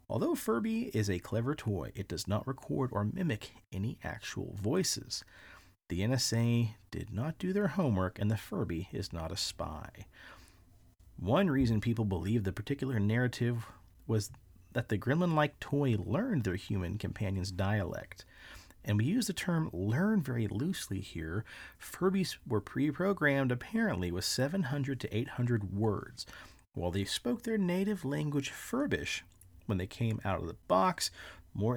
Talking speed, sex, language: 150 wpm, male, English